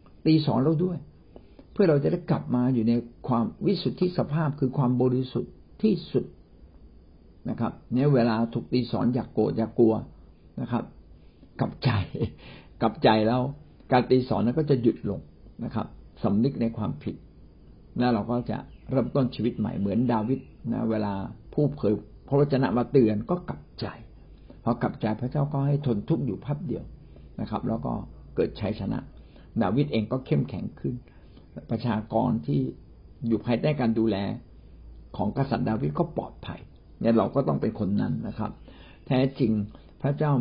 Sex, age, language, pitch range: male, 60-79, Thai, 110-130 Hz